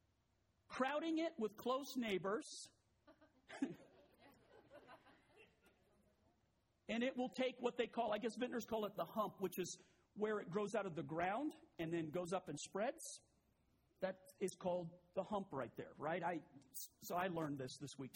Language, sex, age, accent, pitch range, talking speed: English, male, 50-69, American, 165-220 Hz, 160 wpm